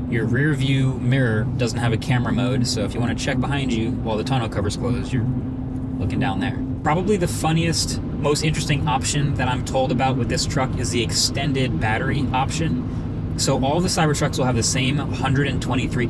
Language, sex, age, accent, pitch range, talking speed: English, male, 20-39, American, 115-130 Hz, 195 wpm